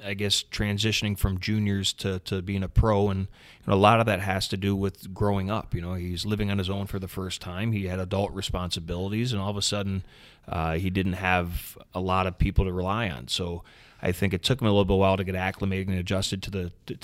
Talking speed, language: 245 wpm, English